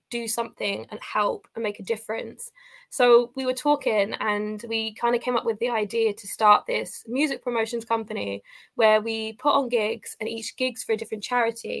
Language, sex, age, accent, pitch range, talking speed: English, female, 20-39, British, 220-260 Hz, 200 wpm